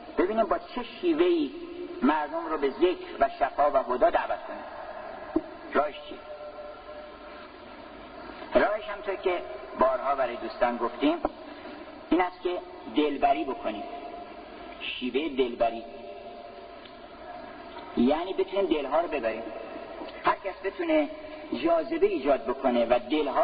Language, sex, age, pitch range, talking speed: Persian, male, 50-69, 295-335 Hz, 110 wpm